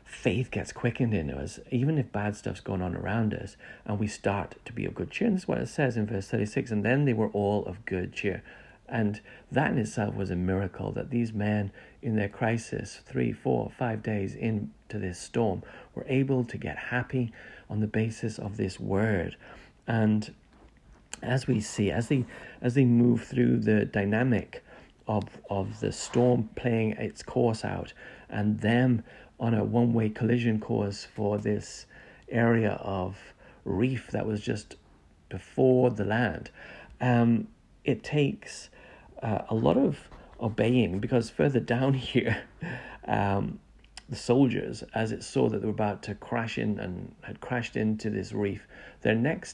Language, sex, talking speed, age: English, male, 170 wpm, 40-59